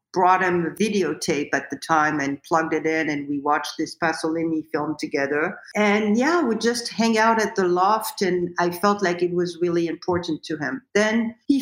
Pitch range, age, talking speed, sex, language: 155-190 Hz, 50-69, 200 wpm, female, English